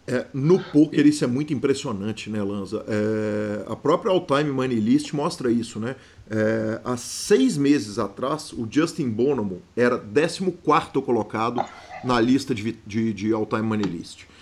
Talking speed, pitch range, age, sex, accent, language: 150 wpm, 115-150 Hz, 40-59, male, Brazilian, Portuguese